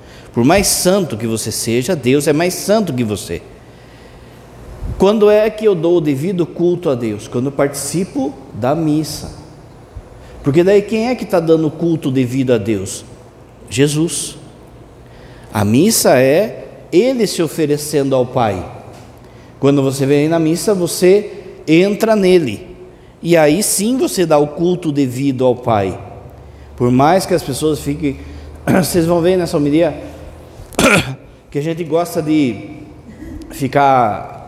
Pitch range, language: 125-175 Hz, Portuguese